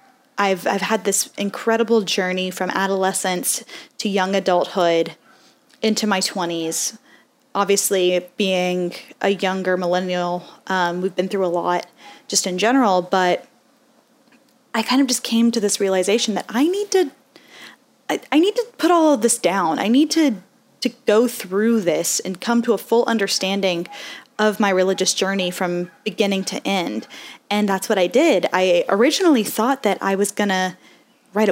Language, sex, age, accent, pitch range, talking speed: English, female, 10-29, American, 190-240 Hz, 160 wpm